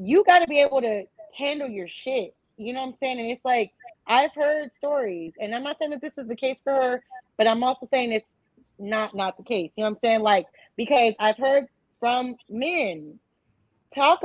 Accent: American